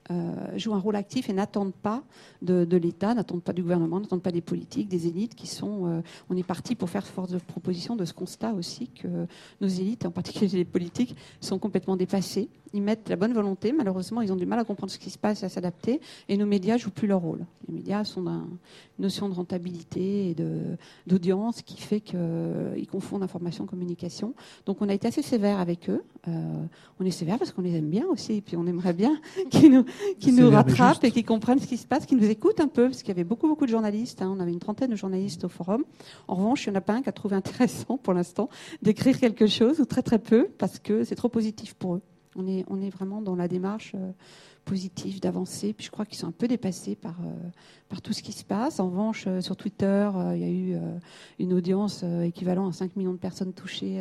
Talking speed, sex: 250 wpm, female